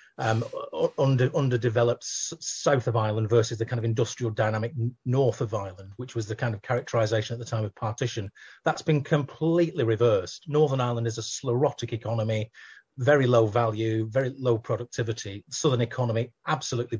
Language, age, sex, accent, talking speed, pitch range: English, 30-49, male, British, 160 wpm, 115-130 Hz